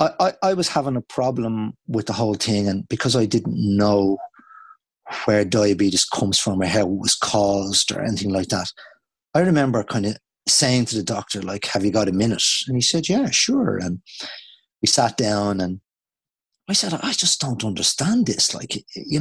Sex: male